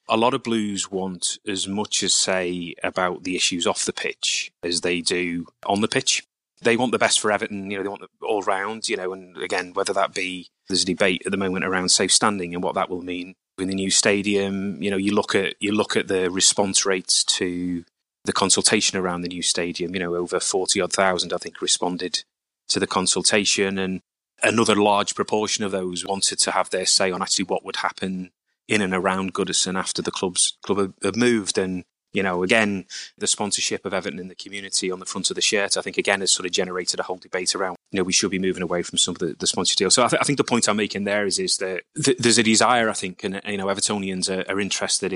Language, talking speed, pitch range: English, 240 wpm, 90-105 Hz